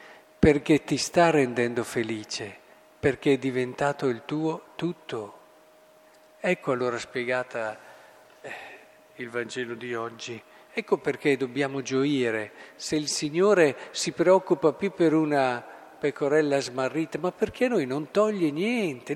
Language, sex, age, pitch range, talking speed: Italian, male, 50-69, 125-165 Hz, 120 wpm